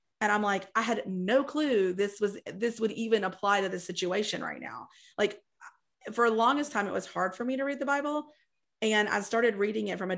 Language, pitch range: English, 190-230 Hz